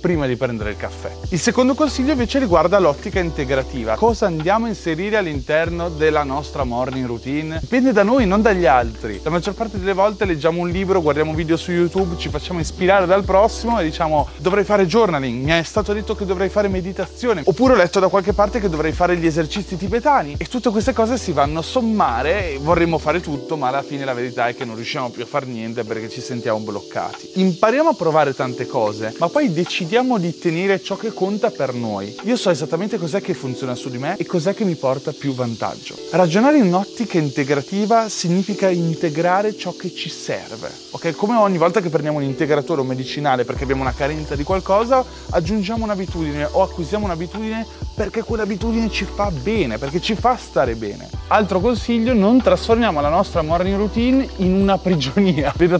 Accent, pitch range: native, 150-210 Hz